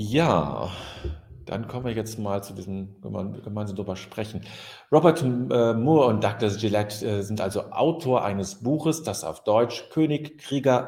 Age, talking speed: 40-59, 155 wpm